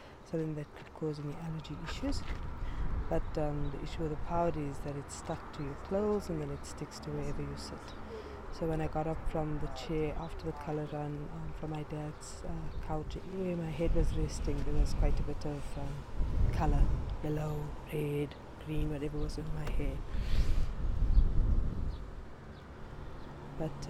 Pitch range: 105-155 Hz